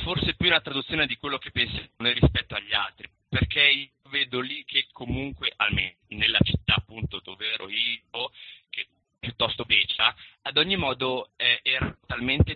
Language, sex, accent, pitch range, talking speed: Italian, male, native, 105-130 Hz, 160 wpm